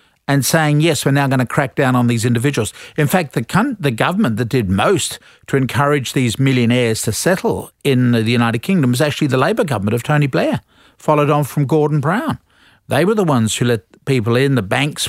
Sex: male